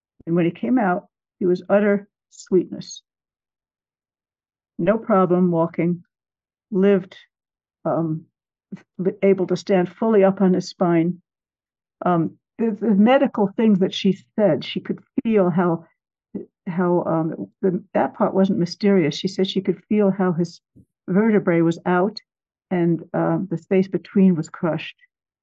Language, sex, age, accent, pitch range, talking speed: English, female, 60-79, American, 170-200 Hz, 135 wpm